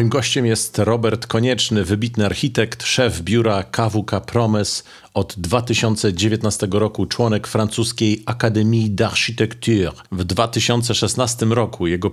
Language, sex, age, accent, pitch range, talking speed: Polish, male, 40-59, native, 100-115 Hz, 110 wpm